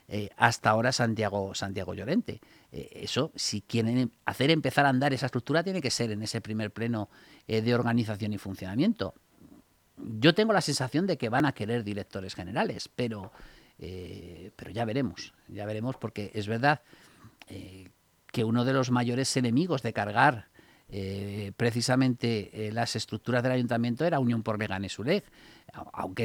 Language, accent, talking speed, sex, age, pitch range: Spanish, Spanish, 160 wpm, male, 50-69, 105-140 Hz